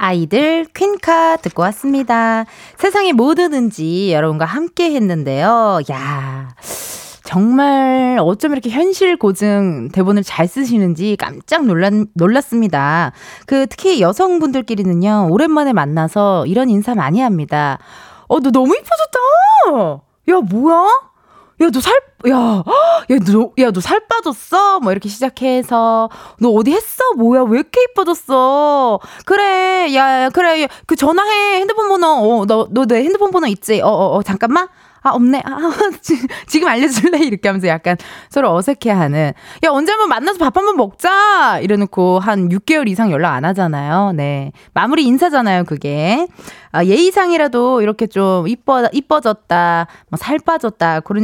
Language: Korean